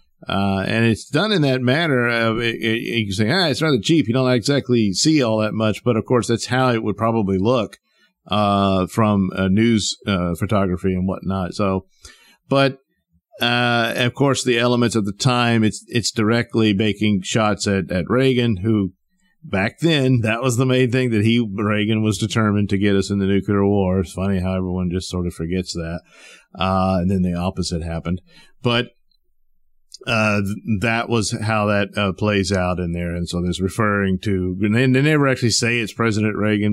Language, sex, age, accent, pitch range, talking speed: English, male, 50-69, American, 95-115 Hz, 195 wpm